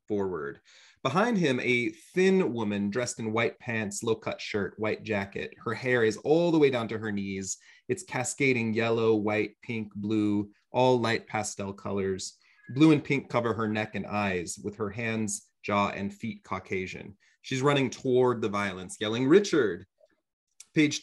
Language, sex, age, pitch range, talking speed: English, male, 30-49, 100-130 Hz, 165 wpm